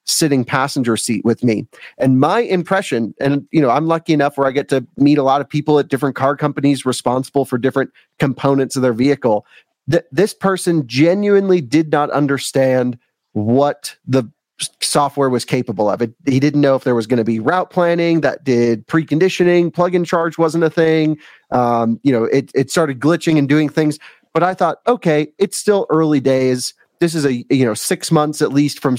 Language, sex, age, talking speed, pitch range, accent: English, male, 30-49, 195 wpm, 130-160 Hz, American